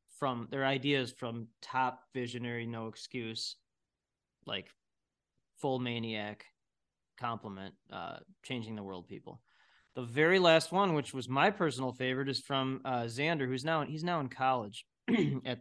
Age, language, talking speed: 20-39, English, 140 wpm